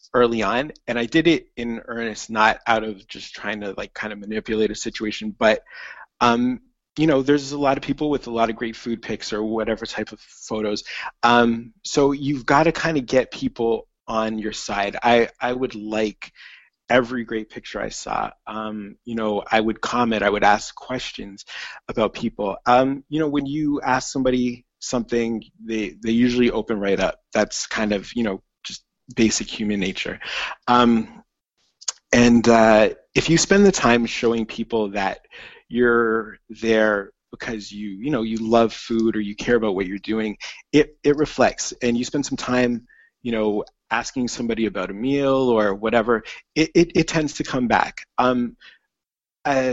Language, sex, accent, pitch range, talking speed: English, male, American, 110-130 Hz, 180 wpm